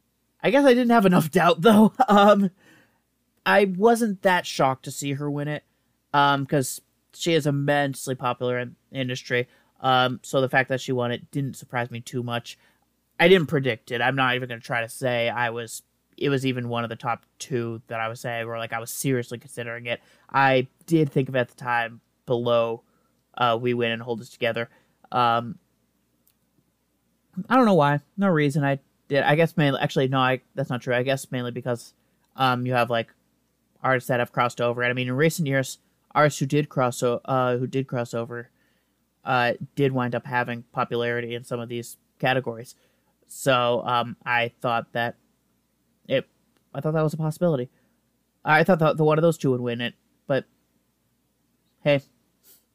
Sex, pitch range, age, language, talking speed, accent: male, 120-145 Hz, 30-49, English, 195 wpm, American